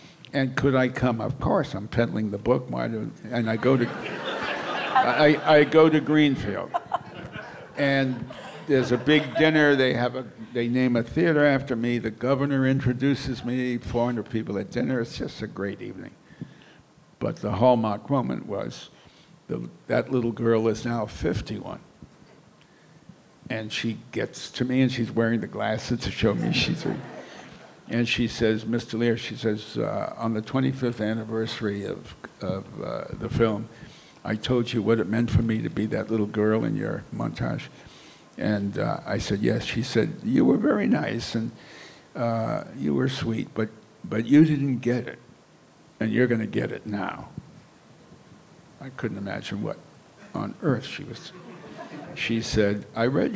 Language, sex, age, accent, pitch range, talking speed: English, male, 60-79, American, 110-130 Hz, 165 wpm